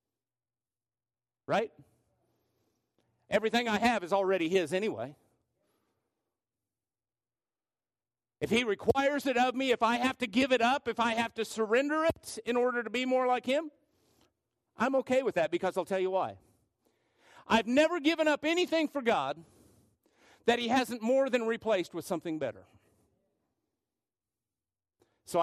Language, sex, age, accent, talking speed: English, male, 50-69, American, 140 wpm